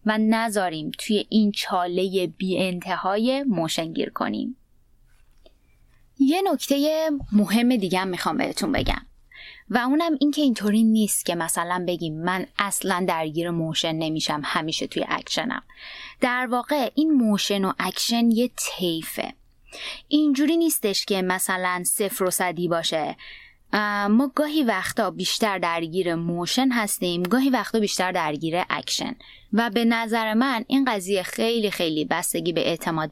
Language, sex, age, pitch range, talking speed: Persian, female, 20-39, 170-235 Hz, 130 wpm